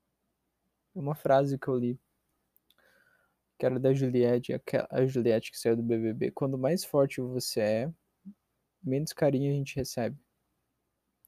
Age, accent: 20-39, Brazilian